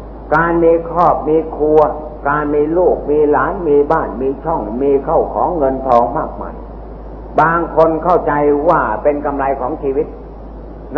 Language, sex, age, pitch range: Thai, male, 60-79, 145-165 Hz